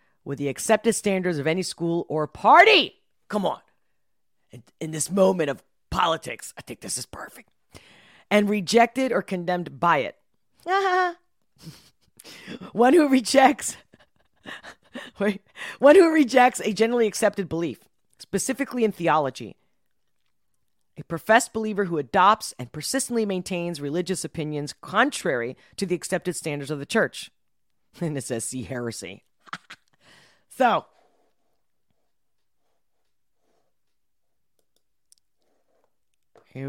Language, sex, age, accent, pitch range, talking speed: English, female, 40-59, American, 160-220 Hz, 110 wpm